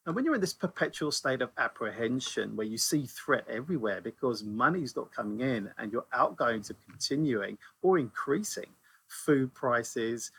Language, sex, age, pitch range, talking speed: English, male, 40-59, 125-155 Hz, 160 wpm